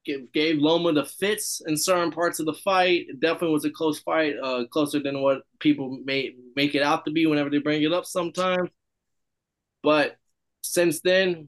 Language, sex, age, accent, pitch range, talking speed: English, male, 20-39, American, 135-155 Hz, 195 wpm